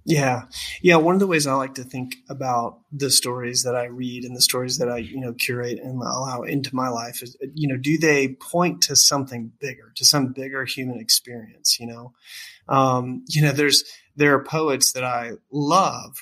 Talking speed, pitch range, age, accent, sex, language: 205 wpm, 125-145 Hz, 30-49, American, male, English